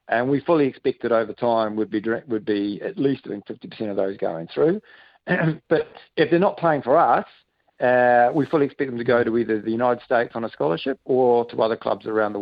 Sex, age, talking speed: male, 50-69, 225 wpm